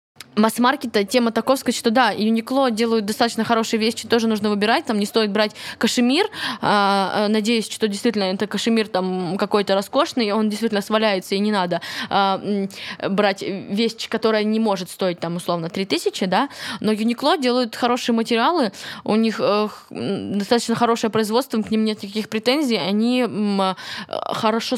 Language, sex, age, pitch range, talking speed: Russian, female, 20-39, 200-230 Hz, 155 wpm